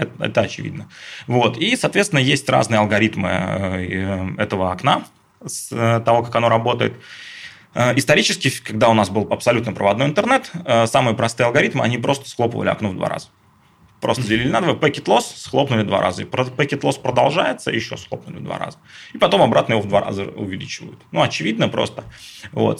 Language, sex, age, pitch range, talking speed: Russian, male, 20-39, 105-135 Hz, 165 wpm